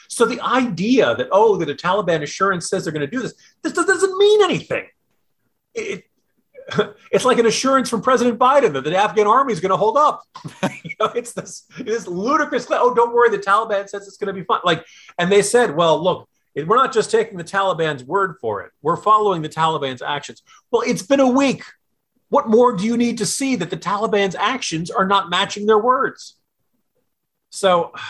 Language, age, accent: English, 40-59, American